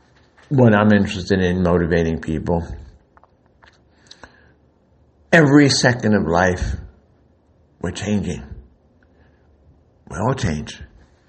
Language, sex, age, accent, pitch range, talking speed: English, male, 60-79, American, 85-110 Hz, 80 wpm